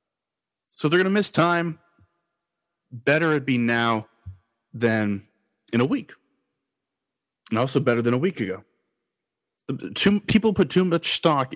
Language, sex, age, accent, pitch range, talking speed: English, male, 30-49, American, 115-145 Hz, 140 wpm